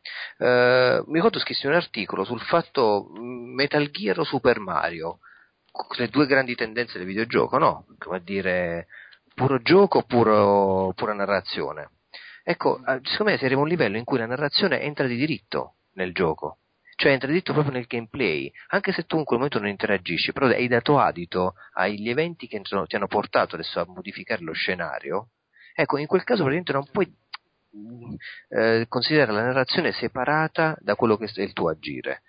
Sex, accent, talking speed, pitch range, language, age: male, native, 170 wpm, 95-145 Hz, Italian, 40-59